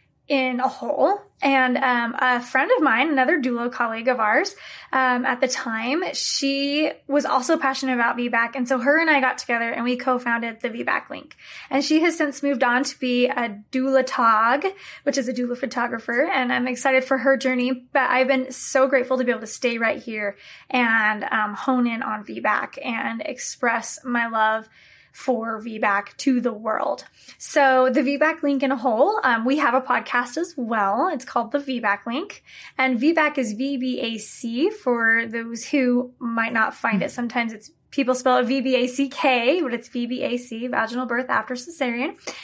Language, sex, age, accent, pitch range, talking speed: English, female, 20-39, American, 230-270 Hz, 180 wpm